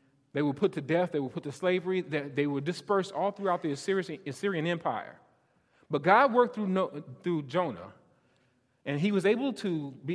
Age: 30-49